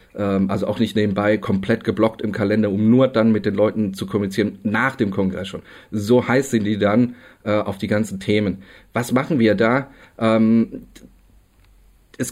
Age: 40-59